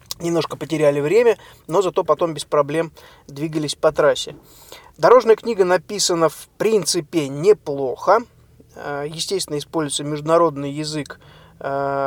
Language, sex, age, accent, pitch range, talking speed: Russian, male, 20-39, native, 145-170 Hz, 105 wpm